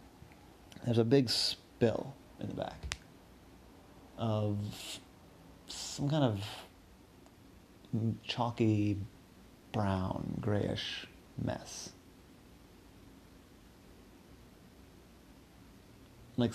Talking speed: 60 wpm